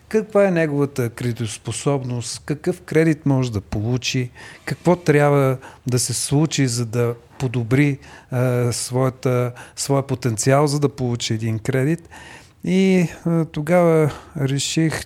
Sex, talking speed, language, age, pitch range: male, 120 wpm, Bulgarian, 40-59, 125-160 Hz